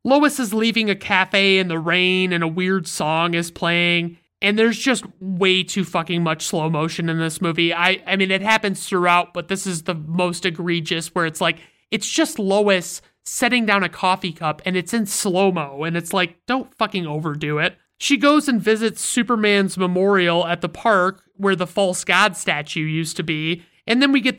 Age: 30-49